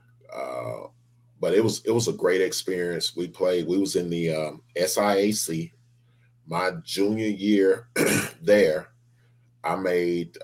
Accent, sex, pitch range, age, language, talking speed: American, male, 80-120 Hz, 30-49, English, 130 wpm